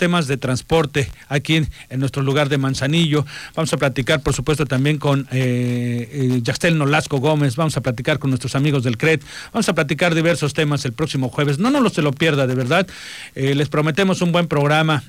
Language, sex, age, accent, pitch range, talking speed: Spanish, male, 40-59, Mexican, 140-170 Hz, 205 wpm